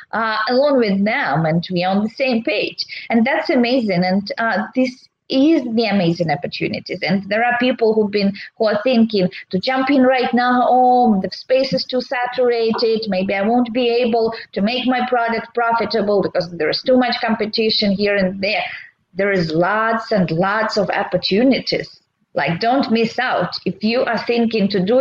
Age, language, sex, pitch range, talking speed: 20-39, English, female, 195-255 Hz, 180 wpm